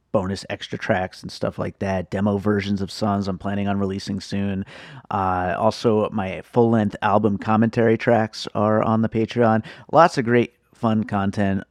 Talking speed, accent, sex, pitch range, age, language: 165 wpm, American, male, 100-120 Hz, 30-49, English